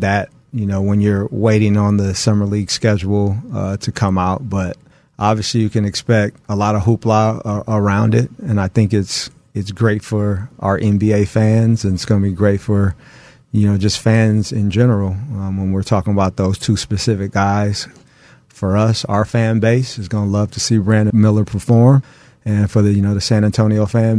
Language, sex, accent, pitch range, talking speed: English, male, American, 100-110 Hz, 205 wpm